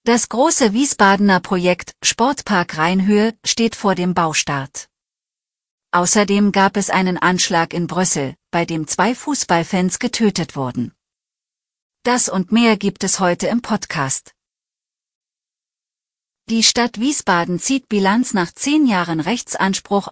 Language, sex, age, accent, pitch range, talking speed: German, female, 40-59, German, 170-230 Hz, 120 wpm